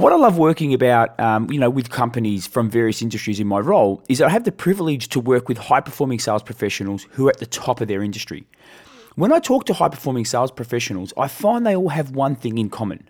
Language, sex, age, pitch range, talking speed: English, male, 30-49, 120-175 Hz, 240 wpm